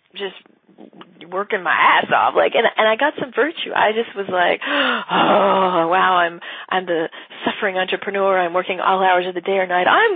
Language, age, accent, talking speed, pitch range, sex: English, 40-59, American, 195 wpm, 185-245 Hz, female